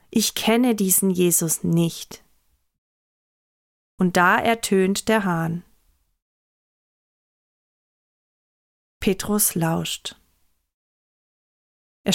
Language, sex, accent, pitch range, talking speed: German, female, German, 165-225 Hz, 65 wpm